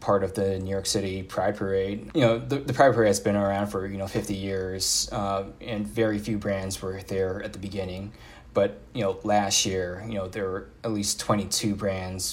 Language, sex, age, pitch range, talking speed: English, male, 20-39, 95-105 Hz, 225 wpm